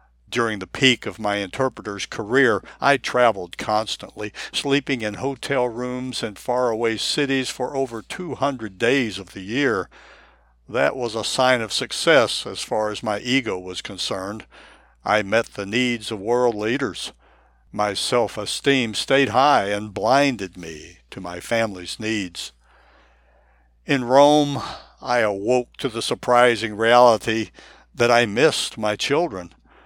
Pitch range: 100-125 Hz